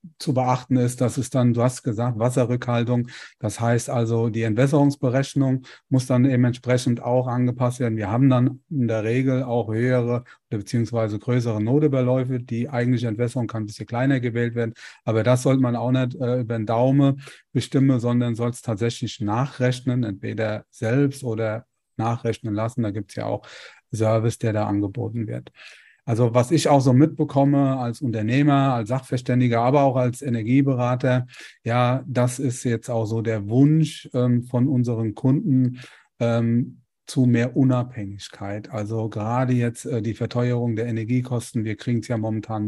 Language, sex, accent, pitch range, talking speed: German, male, German, 115-130 Hz, 165 wpm